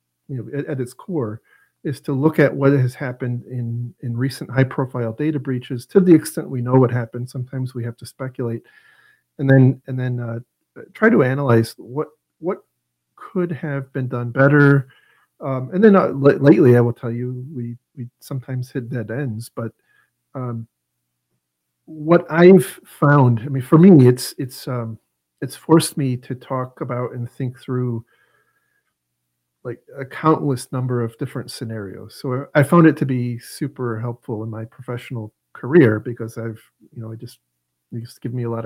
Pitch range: 120-145 Hz